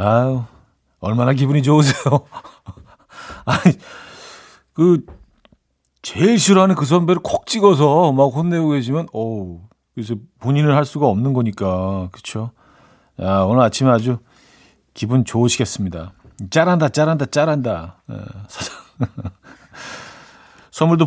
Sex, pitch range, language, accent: male, 100-160 Hz, Korean, native